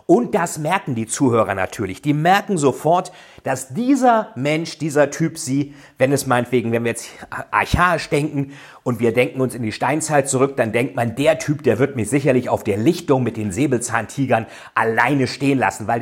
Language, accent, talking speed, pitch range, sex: German, German, 185 wpm, 130-180 Hz, male